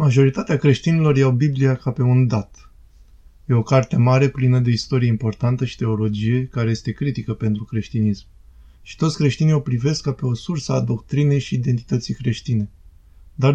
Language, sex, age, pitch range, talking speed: Romanian, male, 20-39, 115-140 Hz, 170 wpm